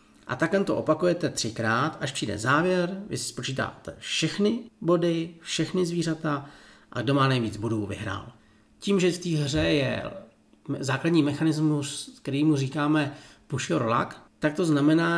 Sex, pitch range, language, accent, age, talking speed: male, 120-160 Hz, Czech, native, 40-59, 150 wpm